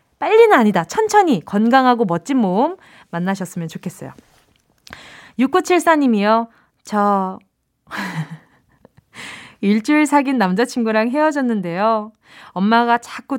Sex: female